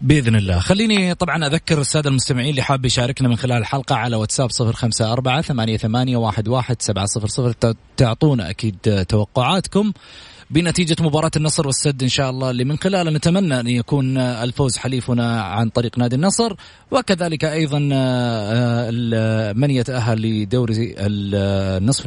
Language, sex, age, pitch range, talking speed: Arabic, male, 30-49, 115-155 Hz, 140 wpm